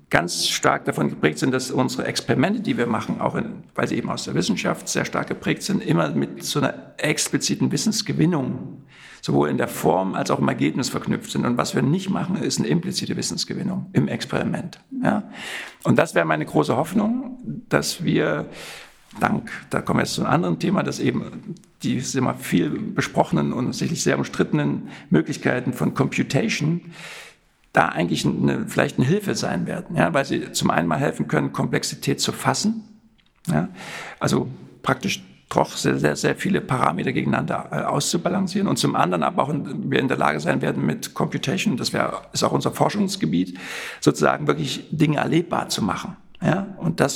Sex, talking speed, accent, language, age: male, 180 wpm, German, German, 60-79